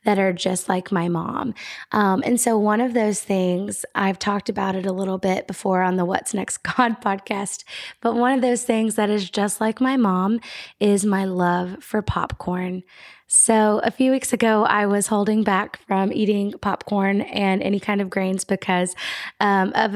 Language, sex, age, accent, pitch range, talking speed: English, female, 20-39, American, 190-230 Hz, 190 wpm